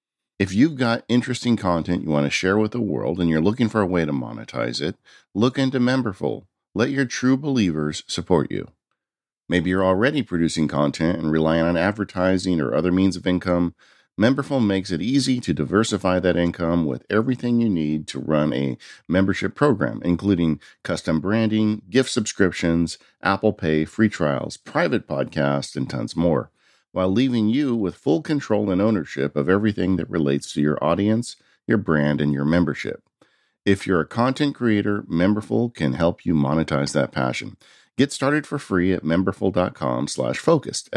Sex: male